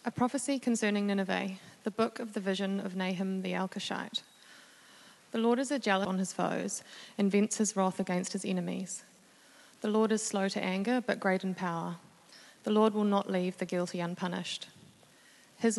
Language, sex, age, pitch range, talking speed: English, female, 30-49, 185-210 Hz, 180 wpm